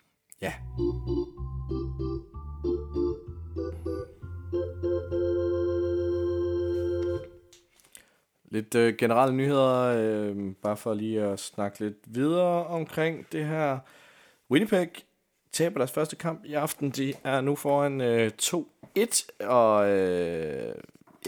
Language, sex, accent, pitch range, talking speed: Danish, male, native, 90-125 Hz, 85 wpm